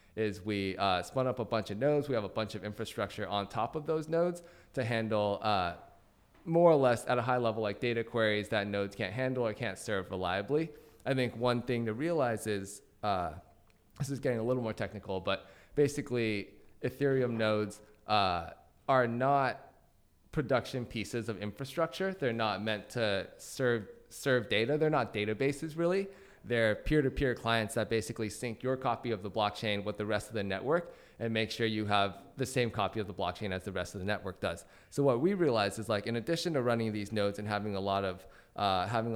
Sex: male